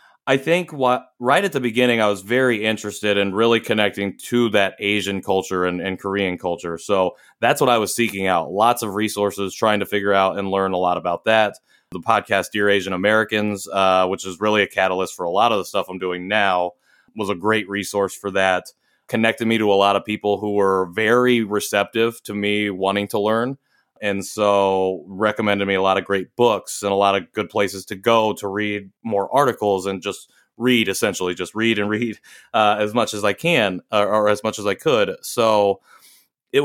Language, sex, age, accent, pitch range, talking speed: English, male, 30-49, American, 100-115 Hz, 210 wpm